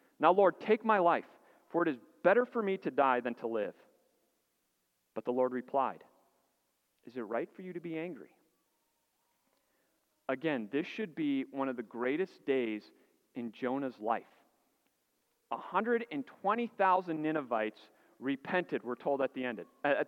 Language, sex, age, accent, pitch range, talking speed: English, male, 40-59, American, 130-195 Hz, 160 wpm